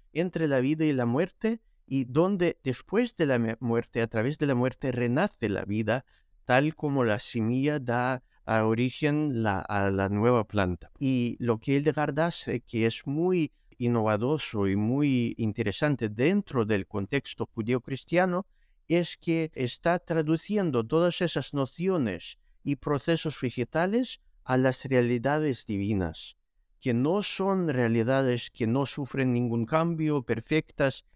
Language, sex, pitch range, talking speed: English, male, 120-165 Hz, 140 wpm